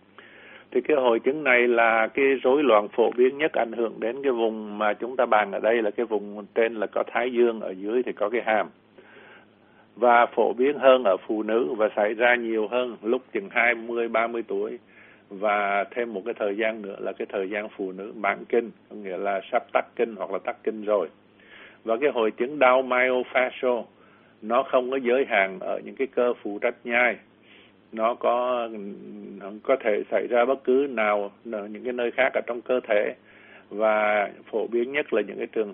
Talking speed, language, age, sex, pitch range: 210 wpm, Vietnamese, 60-79, male, 105-125 Hz